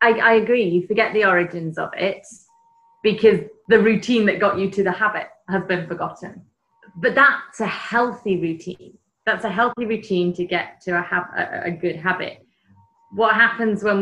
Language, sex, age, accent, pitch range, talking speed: English, female, 30-49, British, 180-225 Hz, 175 wpm